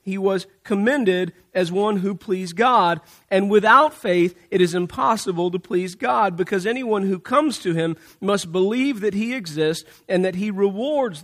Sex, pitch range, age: male, 190-225 Hz, 40-59